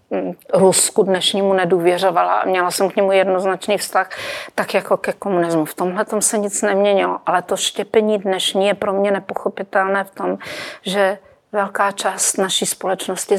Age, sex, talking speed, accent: 40-59, female, 150 wpm, native